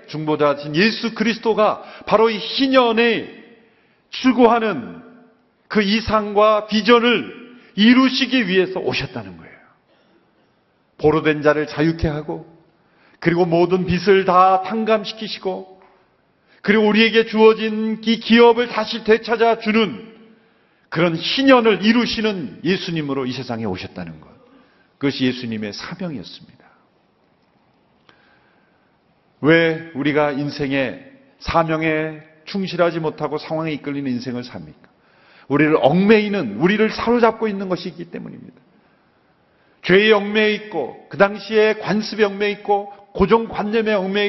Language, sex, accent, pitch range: Korean, male, native, 150-220 Hz